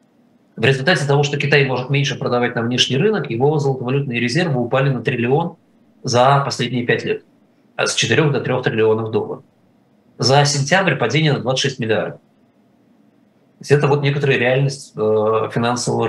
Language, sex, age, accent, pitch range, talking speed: Russian, male, 20-39, native, 120-150 Hz, 140 wpm